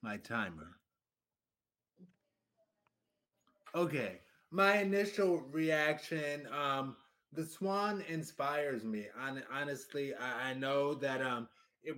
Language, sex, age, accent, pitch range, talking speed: English, male, 20-39, American, 135-175 Hz, 90 wpm